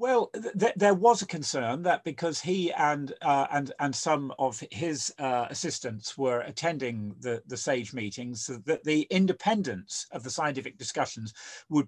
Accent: British